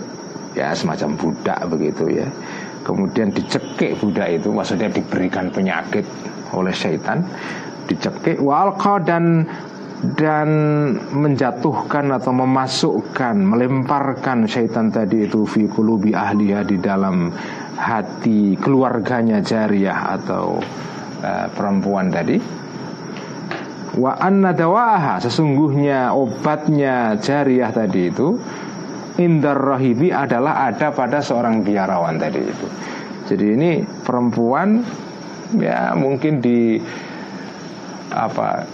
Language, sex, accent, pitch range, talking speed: Indonesian, male, native, 115-155 Hz, 85 wpm